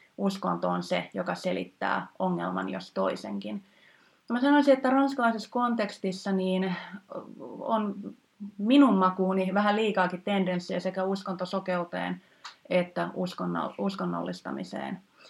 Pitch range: 180-205 Hz